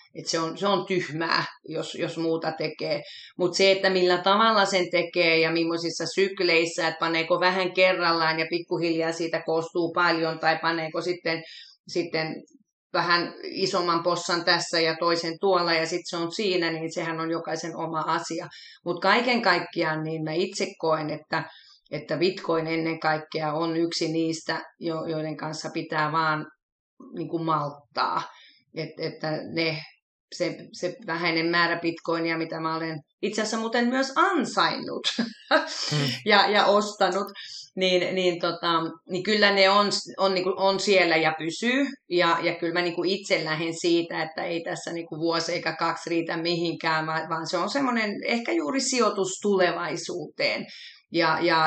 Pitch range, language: 165-185 Hz, Finnish